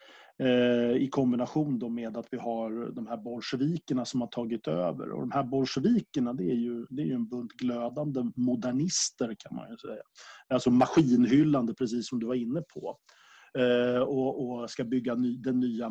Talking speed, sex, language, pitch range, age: 175 wpm, male, Swedish, 120-145 Hz, 30-49